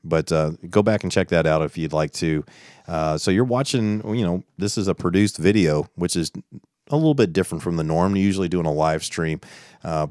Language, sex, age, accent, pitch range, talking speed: English, male, 40-59, American, 80-95 Hz, 230 wpm